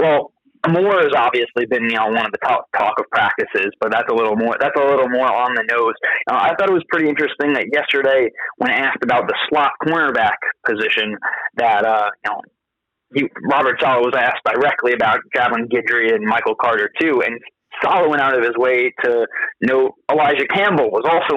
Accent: American